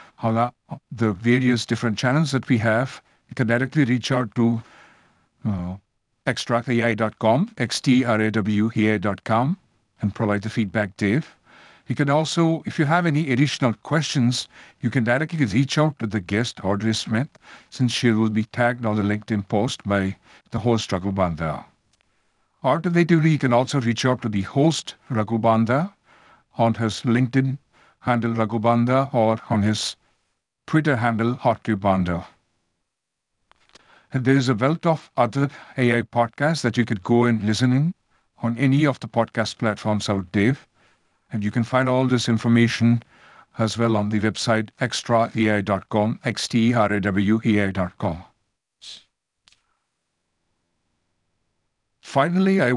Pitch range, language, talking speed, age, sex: 110-130 Hz, English, 130 wpm, 60-79, male